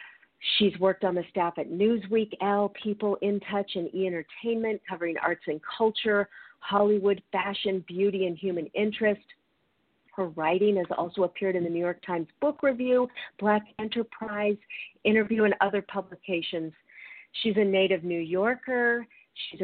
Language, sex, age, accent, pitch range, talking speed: English, female, 40-59, American, 175-210 Hz, 145 wpm